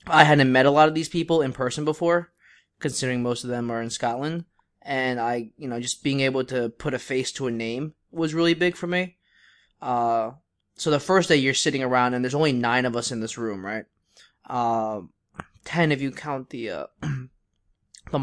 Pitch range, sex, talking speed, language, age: 115-145 Hz, male, 210 wpm, English, 20-39